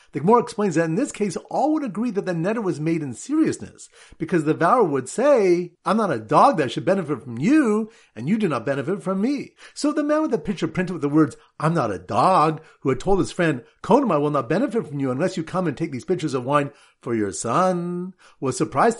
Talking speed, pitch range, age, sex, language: 245 wpm, 145-205 Hz, 50-69, male, English